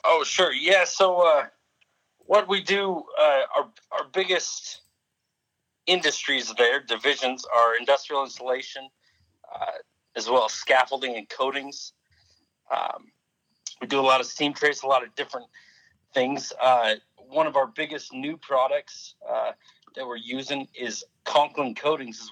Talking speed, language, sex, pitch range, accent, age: 145 wpm, English, male, 115-145 Hz, American, 40-59